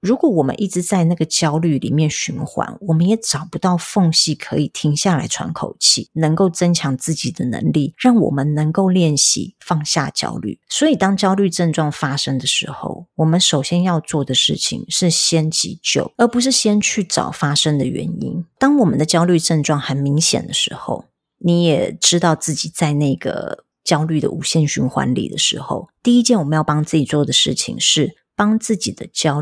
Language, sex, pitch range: Chinese, female, 150-190 Hz